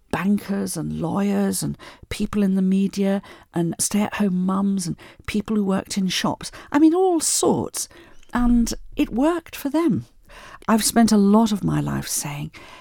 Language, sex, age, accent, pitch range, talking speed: English, female, 50-69, British, 165-220 Hz, 160 wpm